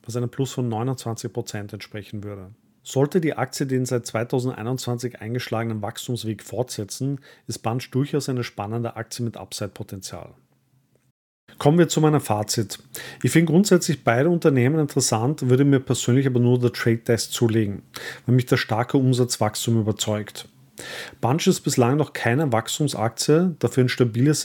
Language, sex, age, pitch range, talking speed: German, male, 40-59, 115-135 Hz, 140 wpm